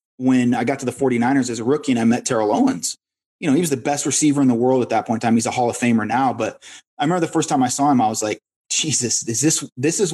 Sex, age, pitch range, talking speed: male, 30-49, 125-160 Hz, 310 wpm